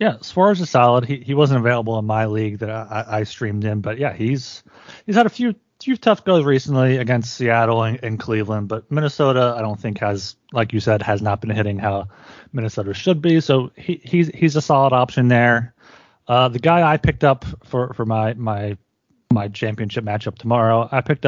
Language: English